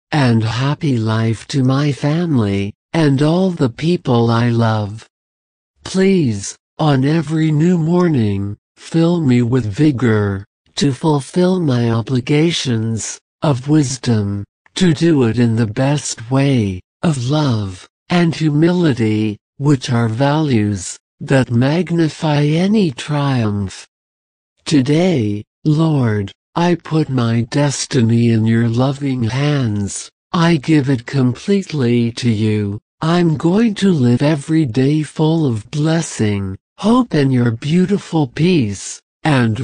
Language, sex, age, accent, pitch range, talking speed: English, male, 60-79, American, 115-160 Hz, 115 wpm